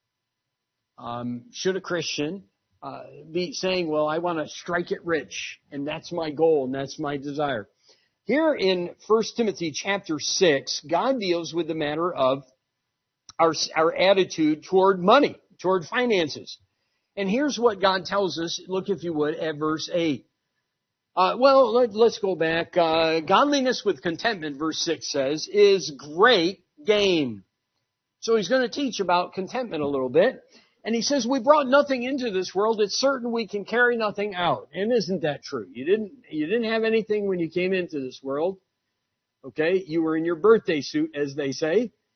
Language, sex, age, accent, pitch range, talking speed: English, male, 50-69, American, 155-230 Hz, 175 wpm